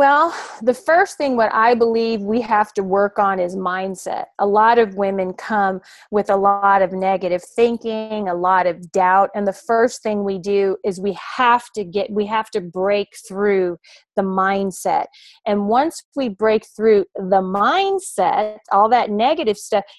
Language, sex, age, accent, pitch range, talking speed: English, female, 30-49, American, 200-250 Hz, 175 wpm